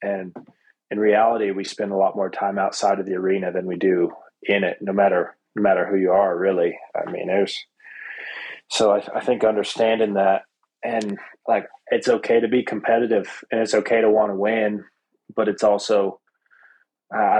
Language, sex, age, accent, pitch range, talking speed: English, male, 20-39, American, 105-130 Hz, 190 wpm